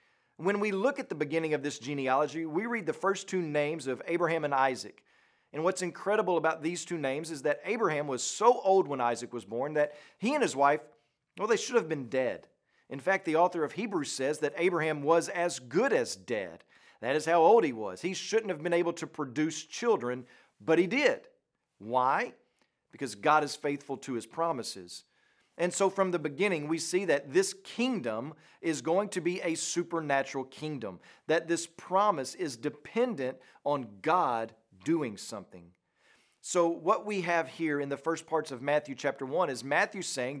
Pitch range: 140-180 Hz